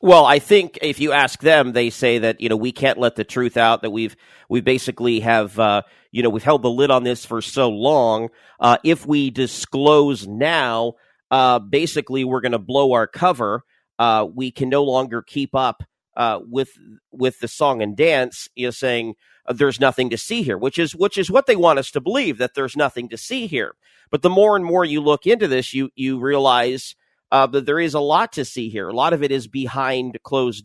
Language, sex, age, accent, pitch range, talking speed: English, male, 40-59, American, 120-150 Hz, 225 wpm